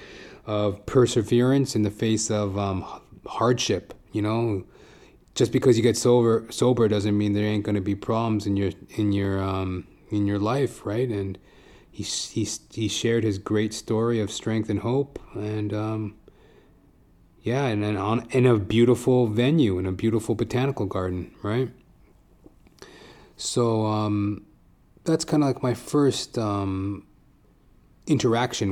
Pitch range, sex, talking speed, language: 100-120 Hz, male, 150 wpm, English